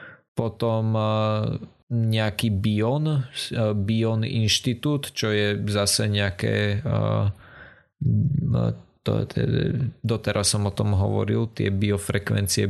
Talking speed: 75 wpm